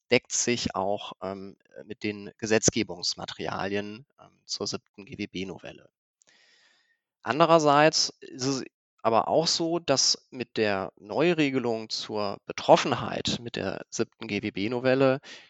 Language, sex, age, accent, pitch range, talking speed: German, male, 20-39, German, 110-140 Hz, 105 wpm